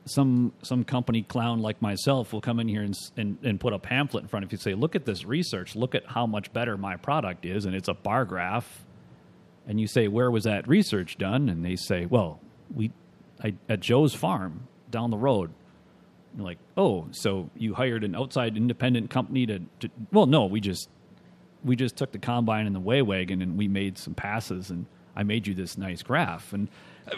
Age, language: 40-59, English